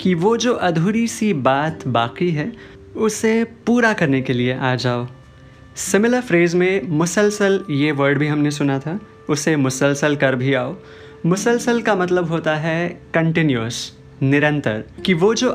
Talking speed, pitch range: 155 wpm, 140-185 Hz